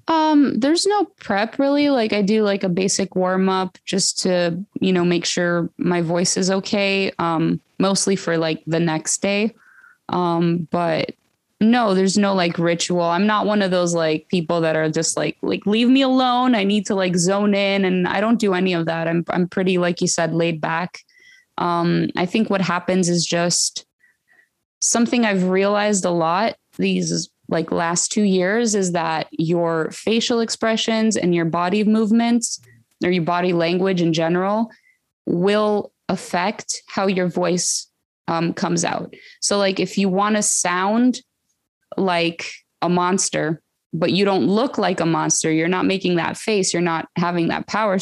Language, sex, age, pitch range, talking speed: English, female, 20-39, 170-210 Hz, 175 wpm